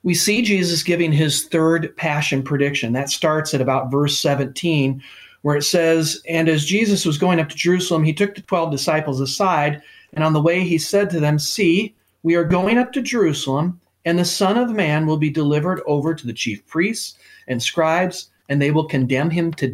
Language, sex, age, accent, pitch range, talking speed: English, male, 40-59, American, 140-185 Hz, 205 wpm